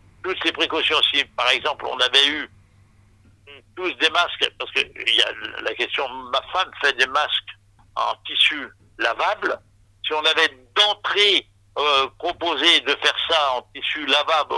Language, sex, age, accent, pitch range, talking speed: French, male, 60-79, French, 125-160 Hz, 155 wpm